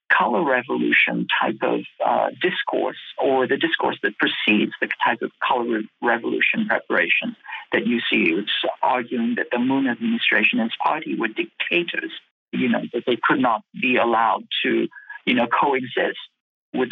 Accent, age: American, 50-69